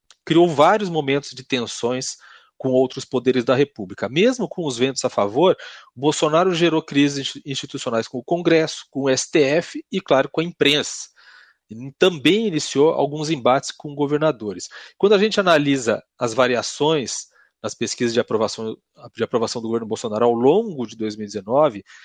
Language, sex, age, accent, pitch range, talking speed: Portuguese, male, 40-59, Brazilian, 130-170 Hz, 150 wpm